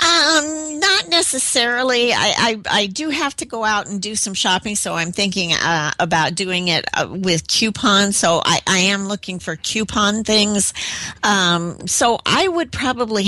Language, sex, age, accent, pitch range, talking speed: English, female, 50-69, American, 165-215 Hz, 170 wpm